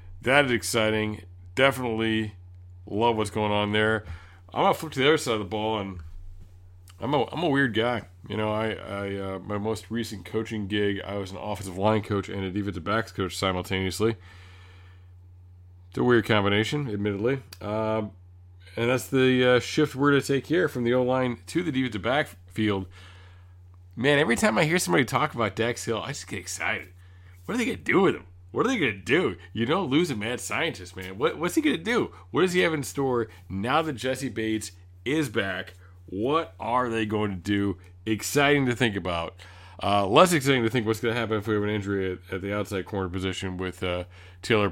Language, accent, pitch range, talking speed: English, American, 90-115 Hz, 210 wpm